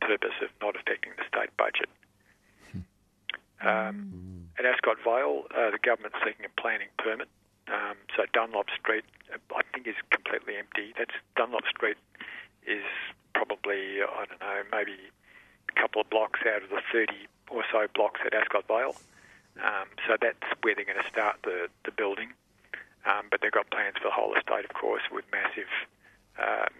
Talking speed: 170 wpm